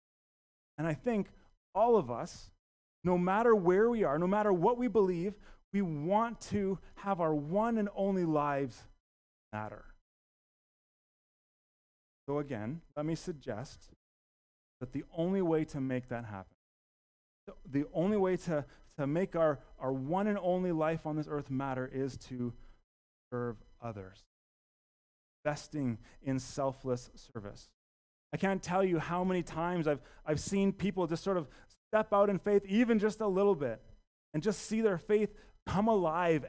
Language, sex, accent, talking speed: English, male, American, 155 wpm